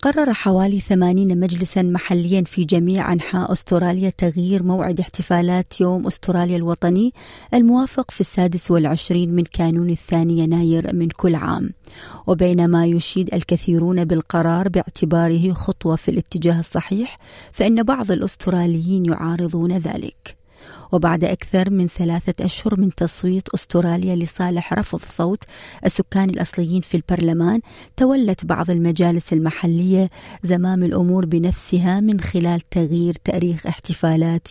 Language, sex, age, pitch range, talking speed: Arabic, female, 30-49, 170-185 Hz, 115 wpm